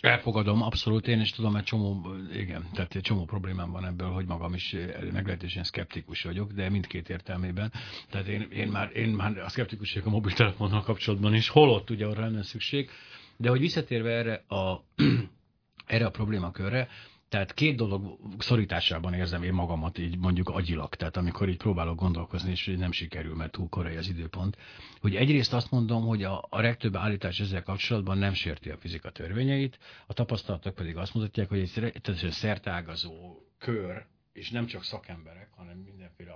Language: Hungarian